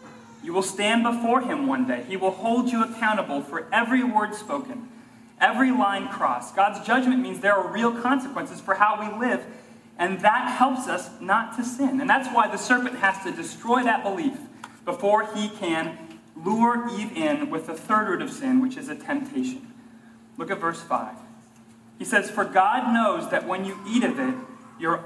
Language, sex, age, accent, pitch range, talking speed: English, male, 30-49, American, 205-260 Hz, 190 wpm